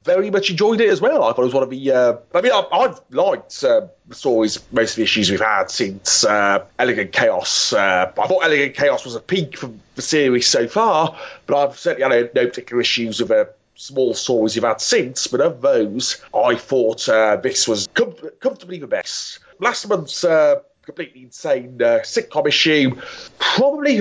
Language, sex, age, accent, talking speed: English, male, 30-49, British, 195 wpm